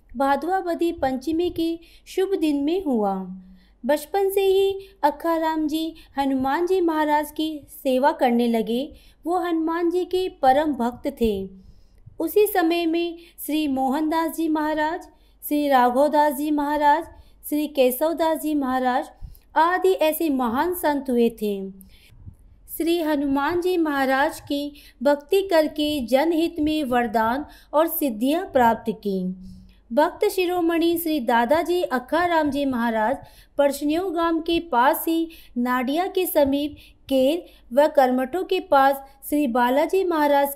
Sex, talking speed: female, 125 wpm